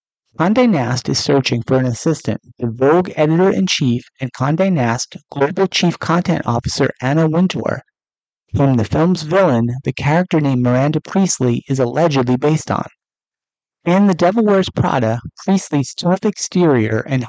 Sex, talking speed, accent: male, 140 wpm, American